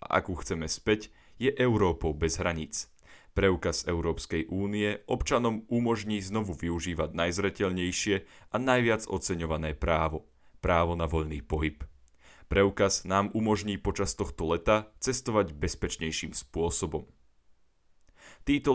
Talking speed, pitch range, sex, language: 110 wpm, 80-110 Hz, male, Slovak